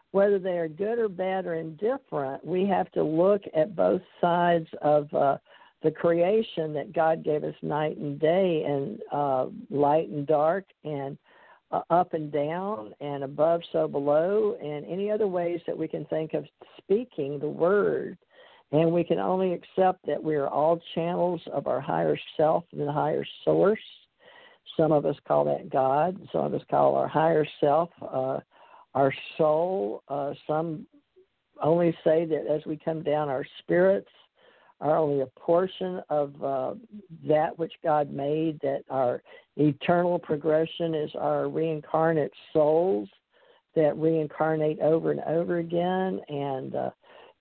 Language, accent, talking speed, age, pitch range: English, American, 155 wpm, 60-79, 150-175 Hz